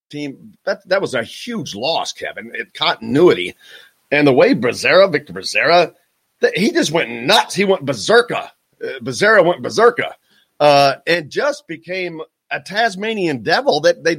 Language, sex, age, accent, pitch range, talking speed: English, male, 40-59, American, 130-185 Hz, 155 wpm